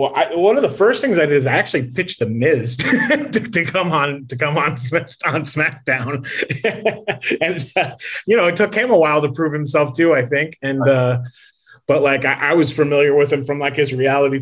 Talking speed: 220 wpm